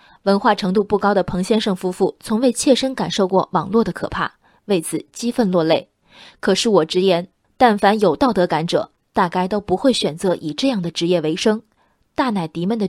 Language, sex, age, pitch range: Chinese, female, 20-39, 185-240 Hz